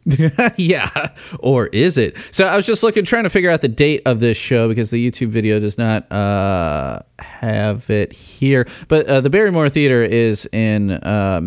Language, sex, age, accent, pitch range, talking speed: English, male, 30-49, American, 105-145 Hz, 190 wpm